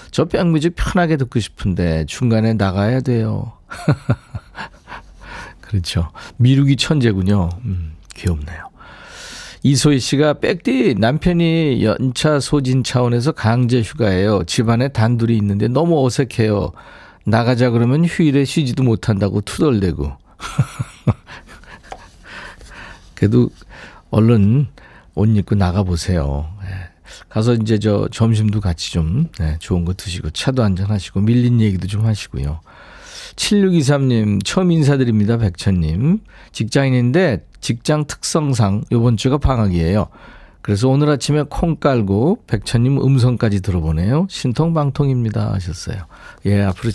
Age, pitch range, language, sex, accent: 50-69, 100-135 Hz, Korean, male, native